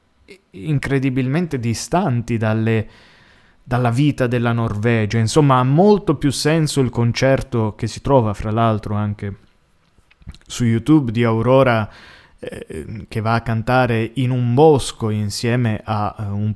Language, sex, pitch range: Italian, male, 110-140 Hz